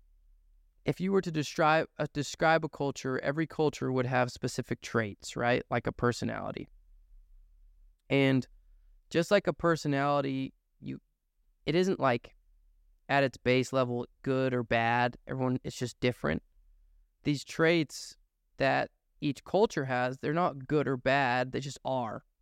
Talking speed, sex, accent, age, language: 145 wpm, male, American, 20-39, English